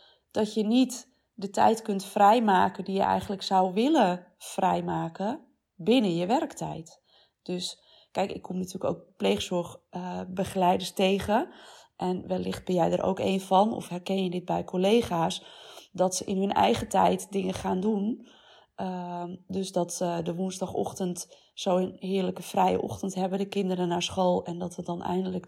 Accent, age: Dutch, 30-49